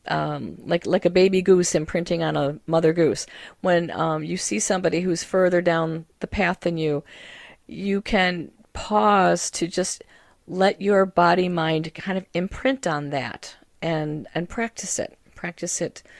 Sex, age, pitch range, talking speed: female, 40-59, 155-185 Hz, 160 wpm